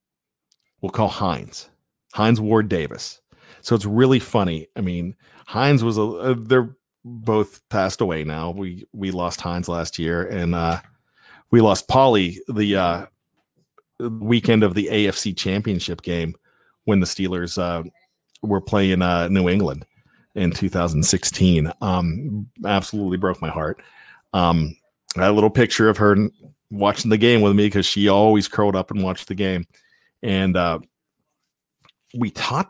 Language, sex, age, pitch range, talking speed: English, male, 40-59, 95-115 Hz, 150 wpm